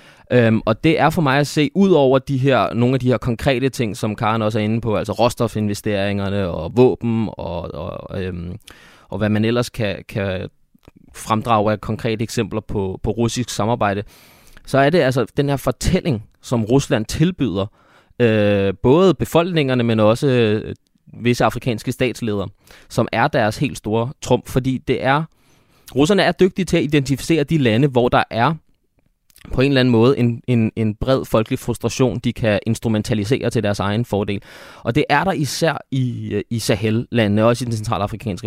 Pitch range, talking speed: 110-135 Hz, 175 wpm